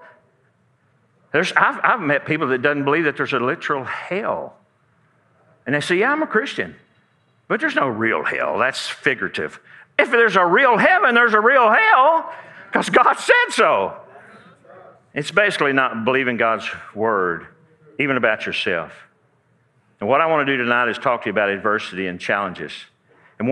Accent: American